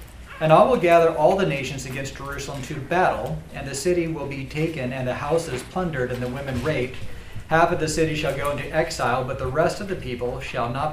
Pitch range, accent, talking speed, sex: 125-160 Hz, American, 225 wpm, male